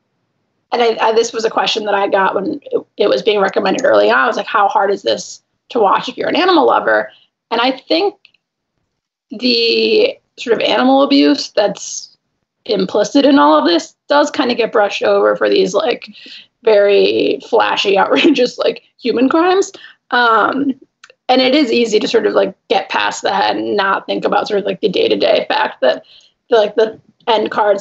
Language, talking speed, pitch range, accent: English, 195 wpm, 220-330 Hz, American